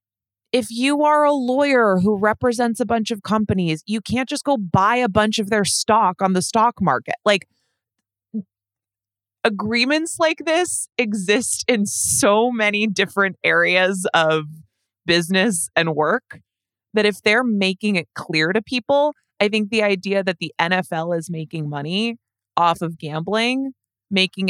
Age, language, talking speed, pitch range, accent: 20-39, English, 150 wpm, 160-225 Hz, American